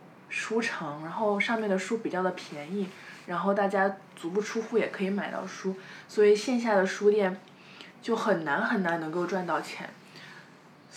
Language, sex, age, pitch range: Chinese, female, 20-39, 185-215 Hz